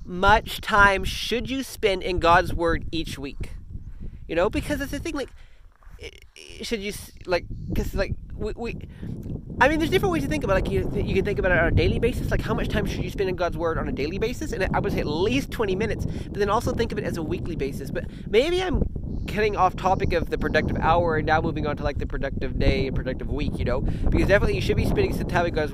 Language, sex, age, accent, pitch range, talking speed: English, male, 30-49, American, 165-235 Hz, 255 wpm